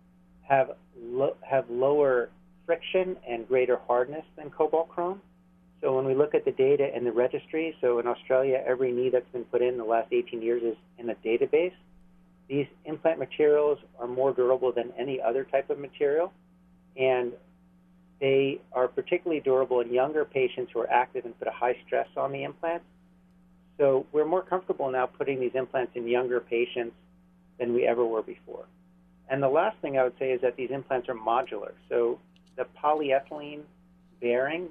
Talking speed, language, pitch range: 175 wpm, English, 120-165 Hz